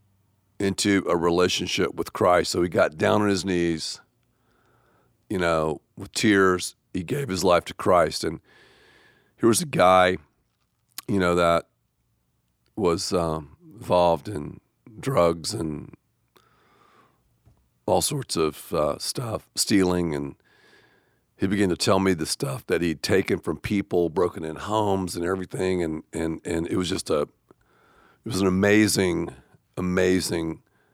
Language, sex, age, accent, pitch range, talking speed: English, male, 50-69, American, 85-105 Hz, 140 wpm